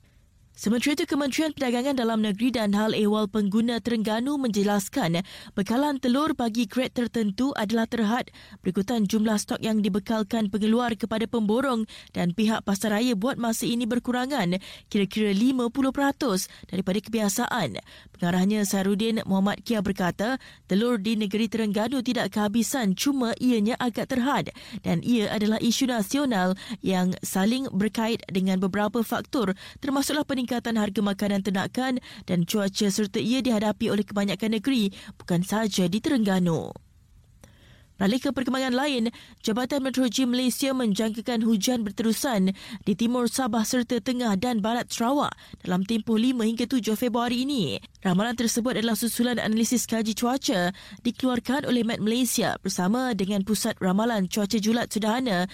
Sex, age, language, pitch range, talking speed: female, 20-39, Malay, 205-245 Hz, 135 wpm